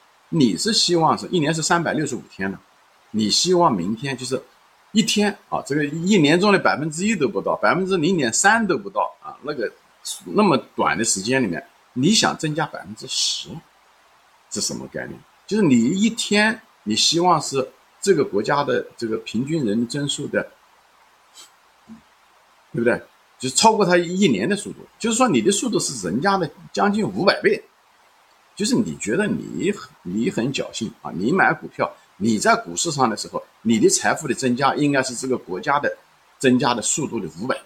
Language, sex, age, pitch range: Chinese, male, 50-69, 130-210 Hz